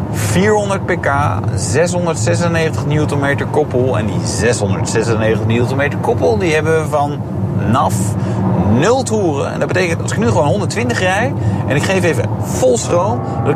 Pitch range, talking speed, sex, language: 120-160 Hz, 145 wpm, male, Dutch